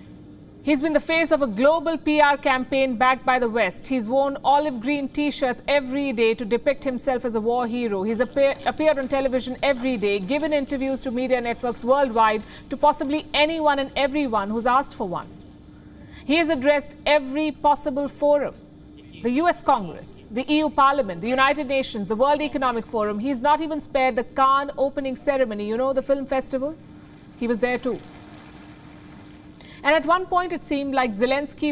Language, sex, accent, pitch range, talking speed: English, female, Indian, 240-290 Hz, 175 wpm